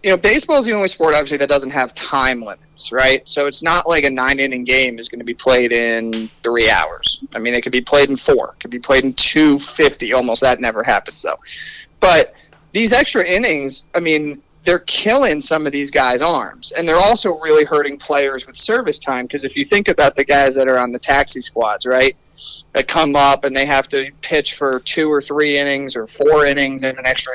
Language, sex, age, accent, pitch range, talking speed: English, male, 30-49, American, 125-150 Hz, 225 wpm